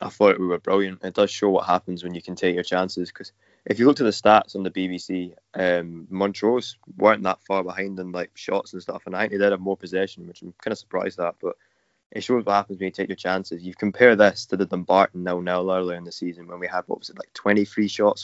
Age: 20-39